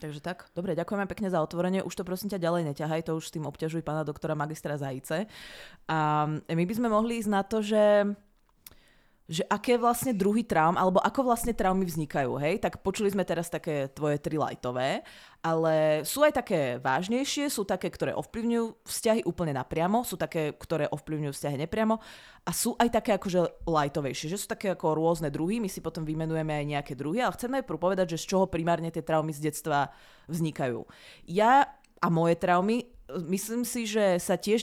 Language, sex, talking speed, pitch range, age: Czech, female, 190 wpm, 155-205 Hz, 20-39